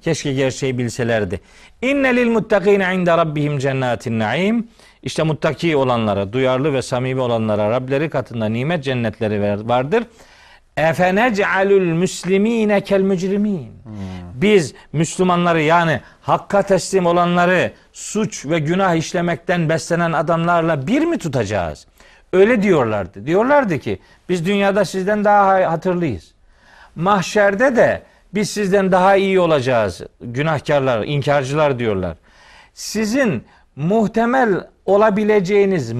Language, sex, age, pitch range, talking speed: Turkish, male, 40-59, 130-205 Hz, 105 wpm